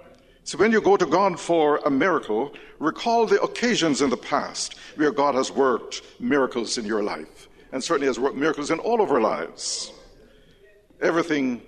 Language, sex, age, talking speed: English, male, 60-79, 175 wpm